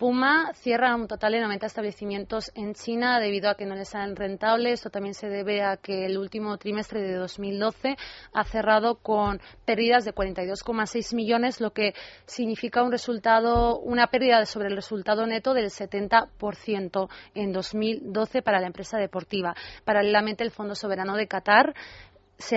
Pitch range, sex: 200-230 Hz, female